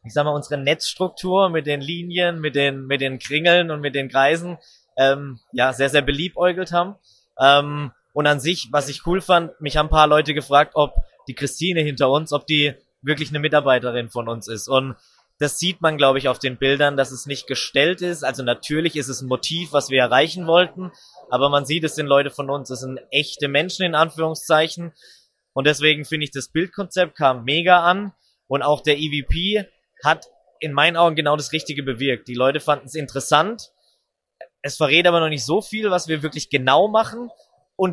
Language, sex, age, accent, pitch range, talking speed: German, male, 20-39, German, 135-165 Hz, 200 wpm